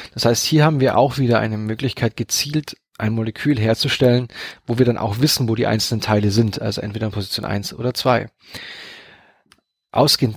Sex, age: male, 30-49